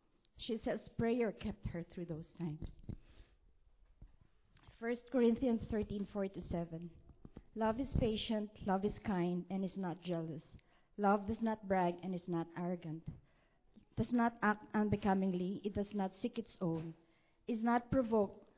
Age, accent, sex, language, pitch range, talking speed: 40-59, Filipino, female, English, 170-220 Hz, 145 wpm